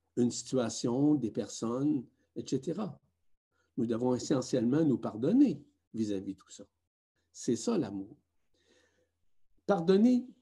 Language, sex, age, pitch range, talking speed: French, male, 60-79, 100-145 Hz, 105 wpm